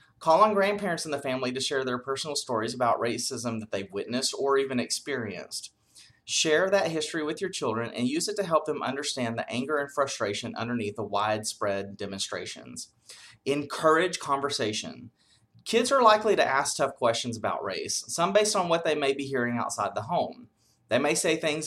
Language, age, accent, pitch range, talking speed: English, 30-49, American, 115-155 Hz, 185 wpm